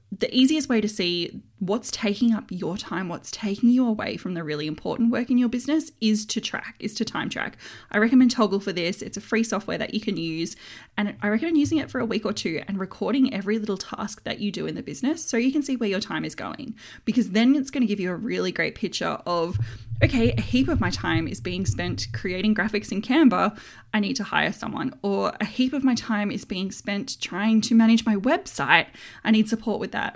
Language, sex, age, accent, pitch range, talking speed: English, female, 20-39, Australian, 195-250 Hz, 240 wpm